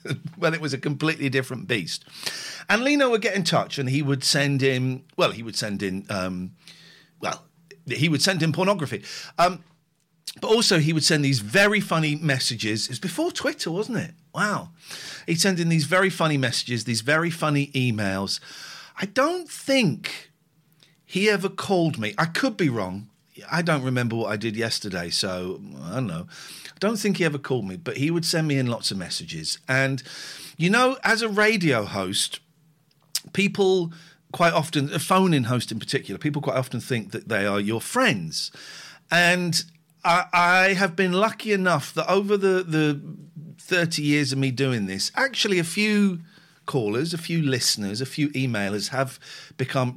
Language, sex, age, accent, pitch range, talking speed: English, male, 50-69, British, 135-180 Hz, 180 wpm